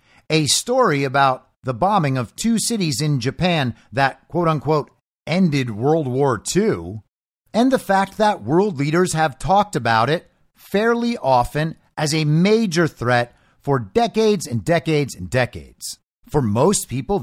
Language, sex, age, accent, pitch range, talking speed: English, male, 50-69, American, 140-210 Hz, 145 wpm